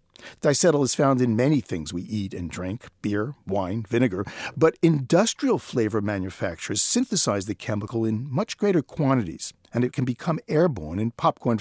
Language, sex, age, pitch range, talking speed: English, male, 50-69, 105-150 Hz, 150 wpm